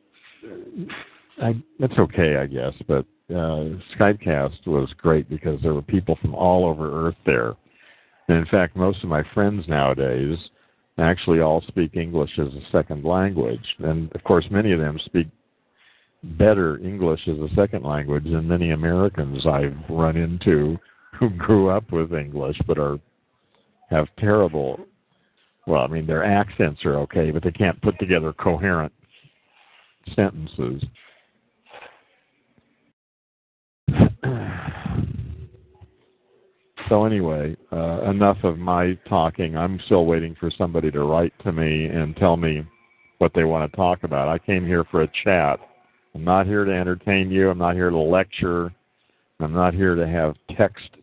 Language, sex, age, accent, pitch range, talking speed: English, male, 50-69, American, 80-95 Hz, 145 wpm